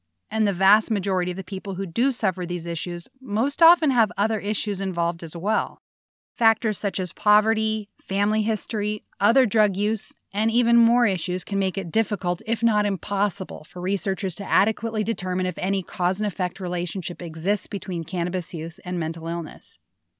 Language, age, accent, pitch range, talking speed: English, 30-49, American, 175-220 Hz, 165 wpm